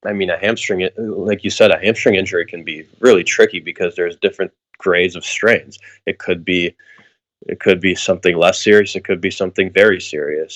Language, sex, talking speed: English, male, 200 wpm